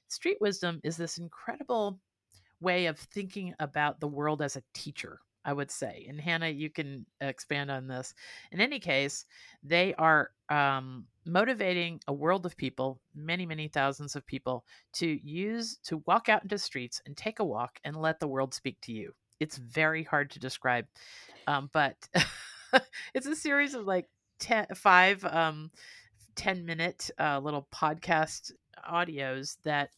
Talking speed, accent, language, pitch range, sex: 160 wpm, American, English, 135-165 Hz, female